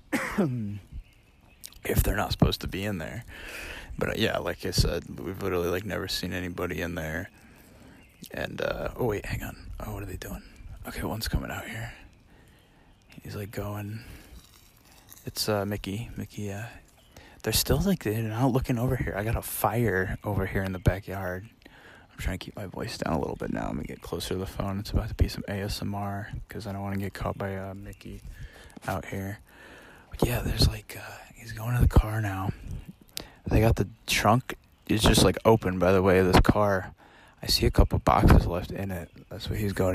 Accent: American